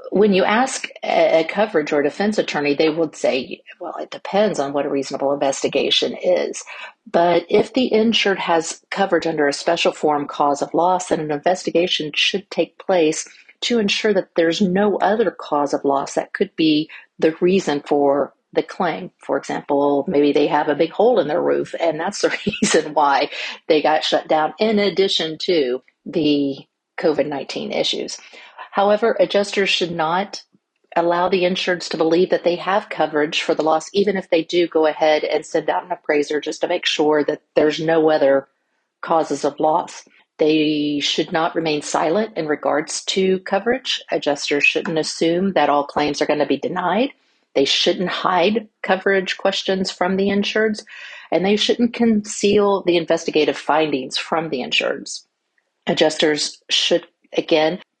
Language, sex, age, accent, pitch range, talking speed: English, female, 50-69, American, 150-200 Hz, 165 wpm